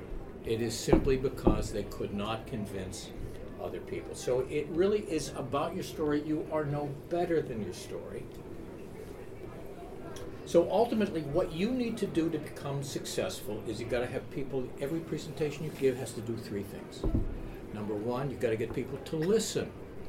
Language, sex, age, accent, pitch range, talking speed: English, male, 60-79, American, 120-165 Hz, 175 wpm